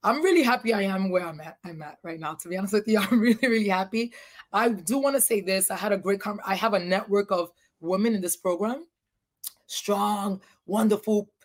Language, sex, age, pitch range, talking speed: English, female, 20-39, 185-230 Hz, 210 wpm